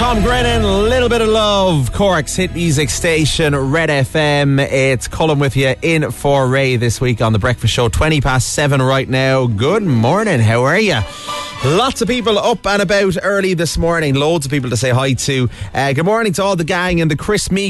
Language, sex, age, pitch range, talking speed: English, male, 30-49, 140-190 Hz, 210 wpm